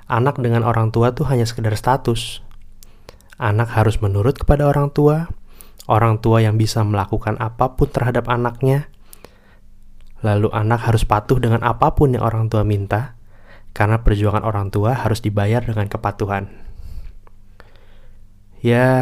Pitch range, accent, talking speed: 105-115 Hz, native, 130 wpm